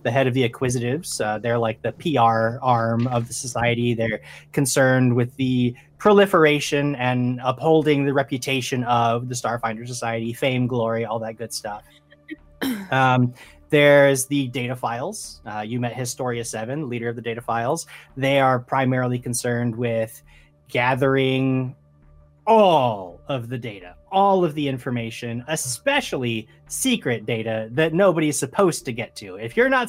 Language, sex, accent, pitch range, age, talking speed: English, male, American, 115-150 Hz, 30-49, 145 wpm